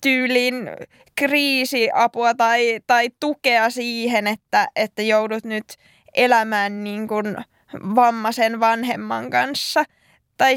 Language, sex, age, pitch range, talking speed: Finnish, female, 20-39, 215-250 Hz, 85 wpm